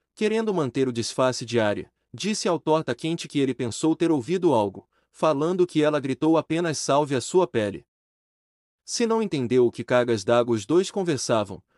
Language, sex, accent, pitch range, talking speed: Portuguese, male, Brazilian, 125-165 Hz, 180 wpm